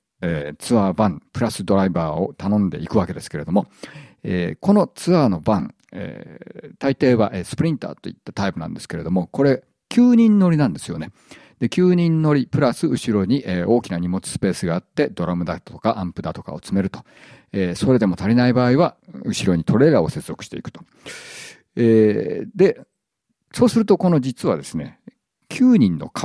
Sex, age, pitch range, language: male, 50-69, 95-150 Hz, Japanese